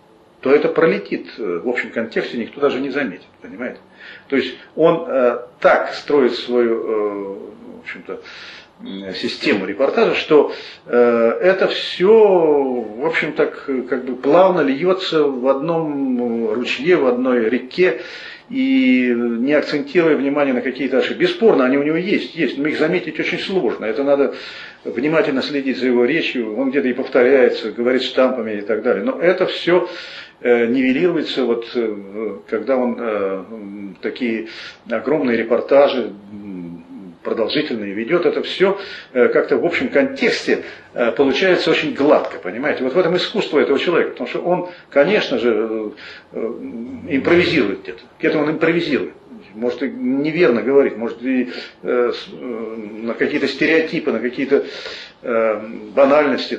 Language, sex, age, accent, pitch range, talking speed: Russian, male, 40-59, native, 120-180 Hz, 130 wpm